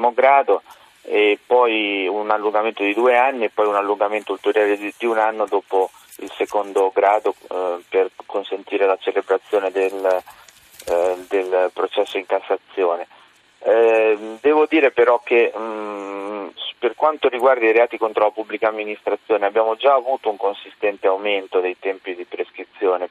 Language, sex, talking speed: Italian, male, 145 wpm